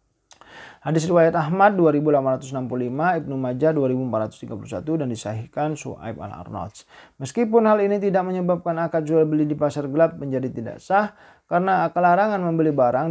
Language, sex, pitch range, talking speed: Indonesian, male, 125-165 Hz, 135 wpm